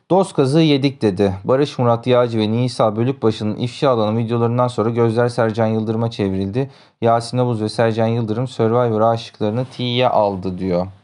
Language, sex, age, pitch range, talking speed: Turkish, male, 30-49, 110-135 Hz, 150 wpm